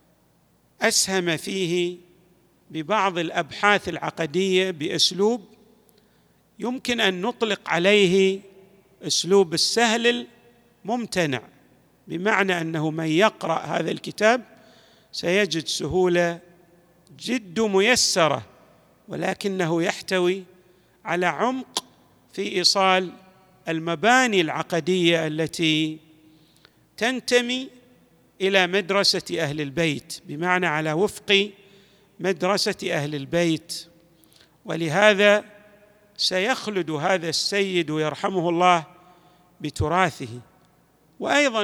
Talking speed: 75 wpm